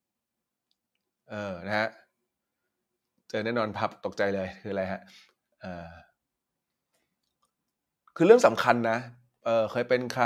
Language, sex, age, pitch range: Thai, male, 20-39, 130-185 Hz